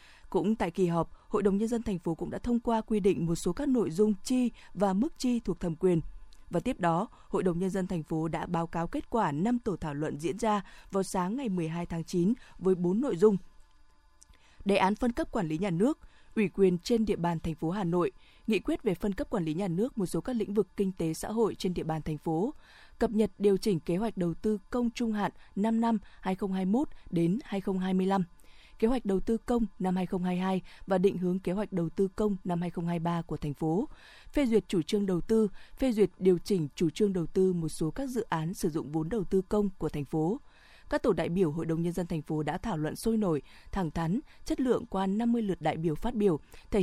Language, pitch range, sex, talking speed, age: Vietnamese, 170-215 Hz, female, 240 wpm, 20-39